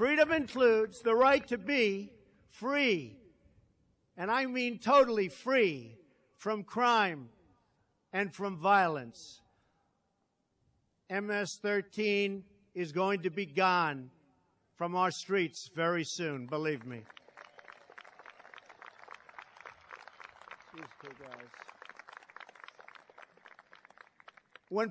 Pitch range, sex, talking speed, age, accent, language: 185-240 Hz, male, 75 wpm, 50-69, American, English